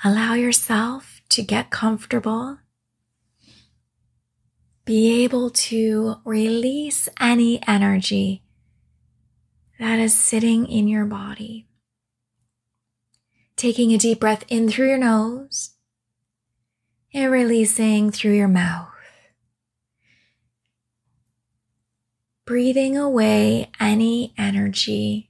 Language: English